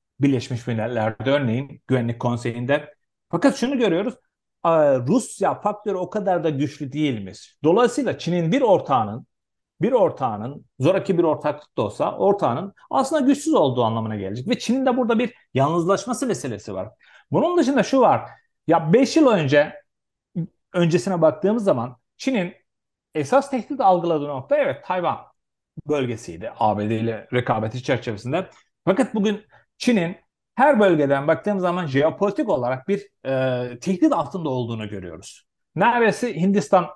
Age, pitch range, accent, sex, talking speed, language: 40-59, 135-215 Hz, native, male, 130 wpm, Turkish